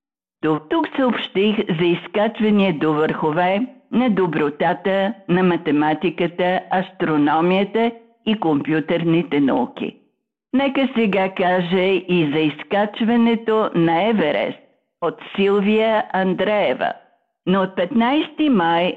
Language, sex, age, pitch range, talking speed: Bulgarian, female, 50-69, 170-225 Hz, 90 wpm